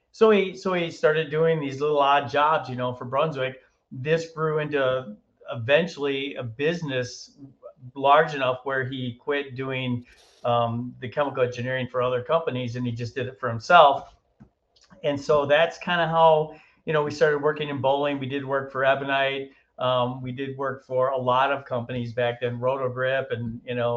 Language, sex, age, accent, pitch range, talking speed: English, male, 40-59, American, 125-145 Hz, 185 wpm